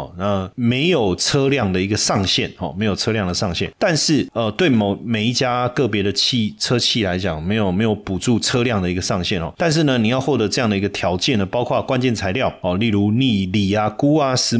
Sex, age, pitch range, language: male, 30-49, 95-125 Hz, Chinese